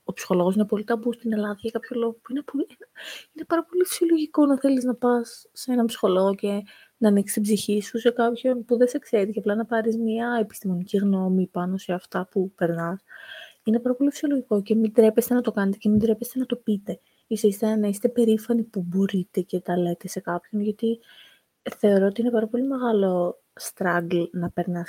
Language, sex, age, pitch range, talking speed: Greek, female, 20-39, 195-240 Hz, 205 wpm